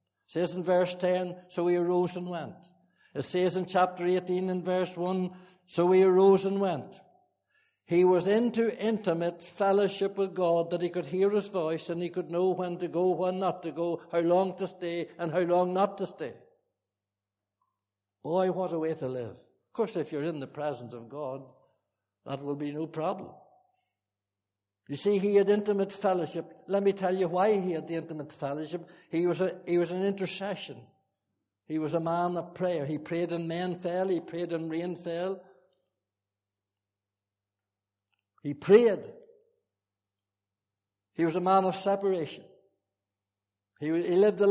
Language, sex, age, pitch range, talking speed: English, male, 60-79, 145-185 Hz, 175 wpm